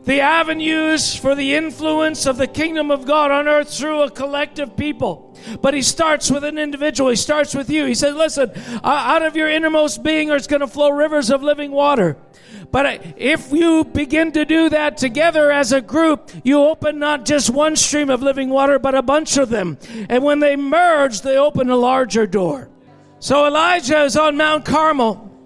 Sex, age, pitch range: male, 50-69, 275-310 Hz